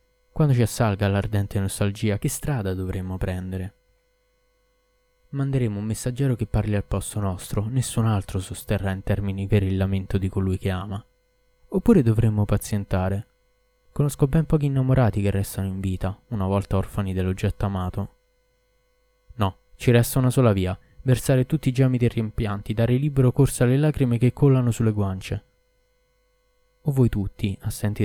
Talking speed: 150 wpm